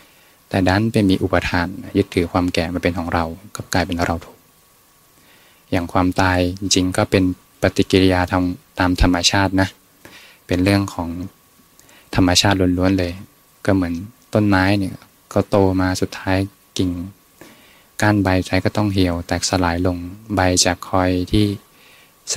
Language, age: Thai, 20-39